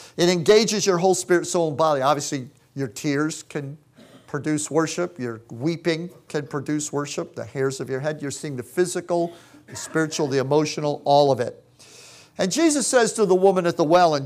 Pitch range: 145-190 Hz